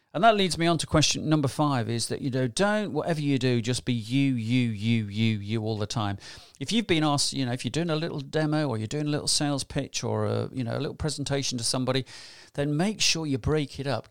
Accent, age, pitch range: British, 40-59, 120-160 Hz